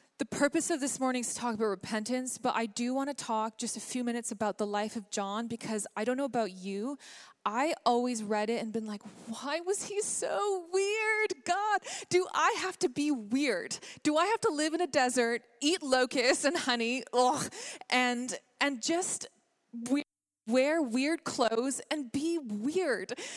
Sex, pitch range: female, 235-310 Hz